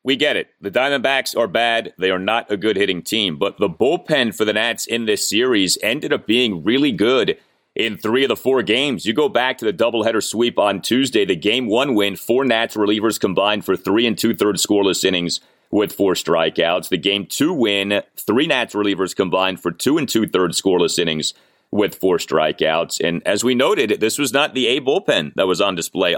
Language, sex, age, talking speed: English, male, 30-49, 215 wpm